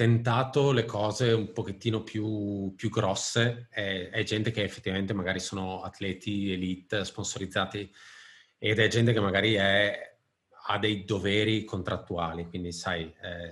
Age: 30-49